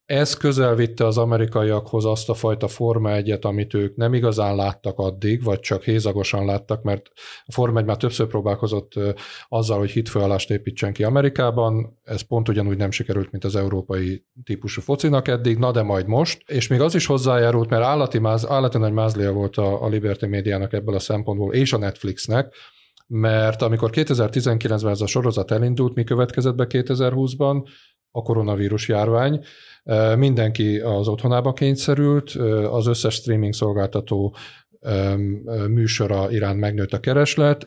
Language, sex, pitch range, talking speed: Hungarian, male, 105-125 Hz, 155 wpm